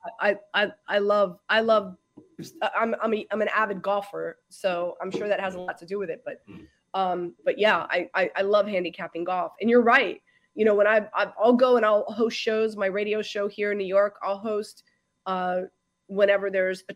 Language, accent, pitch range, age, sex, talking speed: English, American, 195-245 Hz, 20-39, female, 215 wpm